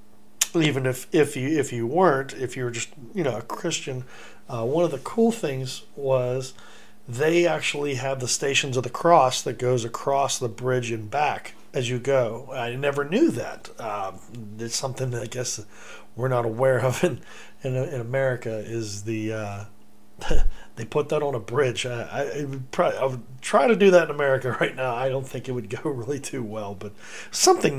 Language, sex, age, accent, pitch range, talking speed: English, male, 40-59, American, 120-140 Hz, 200 wpm